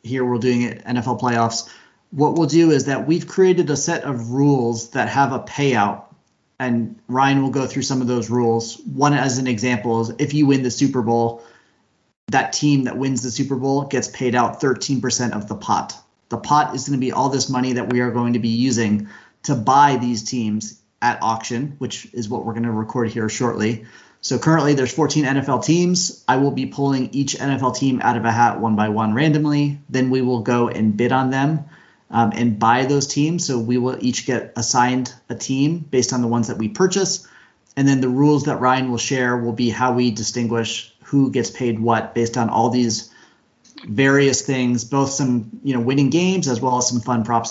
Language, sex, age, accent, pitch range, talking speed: English, male, 30-49, American, 115-135 Hz, 215 wpm